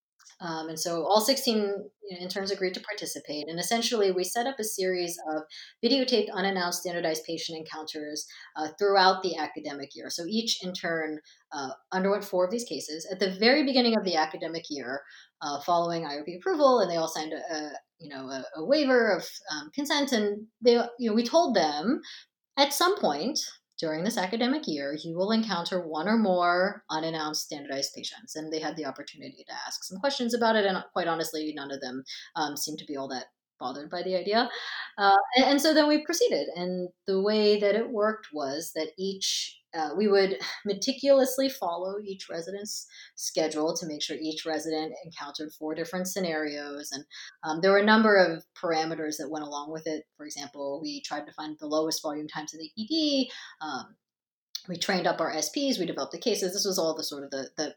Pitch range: 155-215 Hz